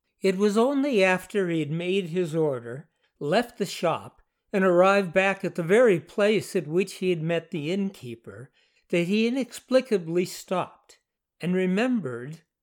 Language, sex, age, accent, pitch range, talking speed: English, male, 60-79, American, 165-215 Hz, 150 wpm